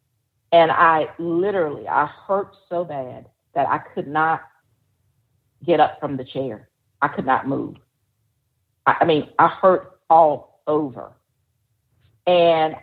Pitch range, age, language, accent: 135-170 Hz, 50-69, English, American